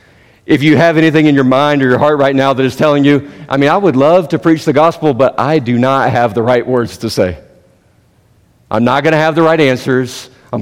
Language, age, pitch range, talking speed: English, 40-59, 110-155 Hz, 250 wpm